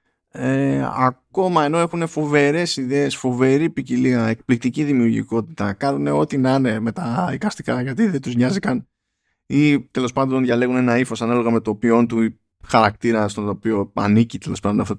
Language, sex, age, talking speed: Greek, male, 20-39, 145 wpm